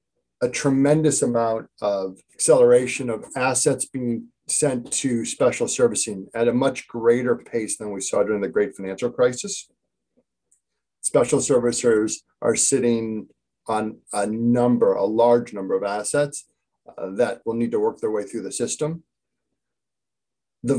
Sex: male